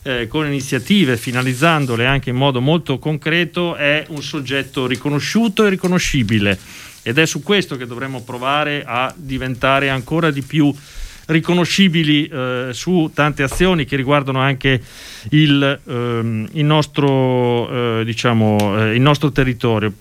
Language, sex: Italian, male